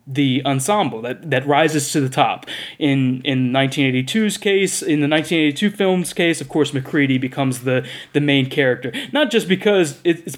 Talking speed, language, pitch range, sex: 170 wpm, English, 140-180 Hz, male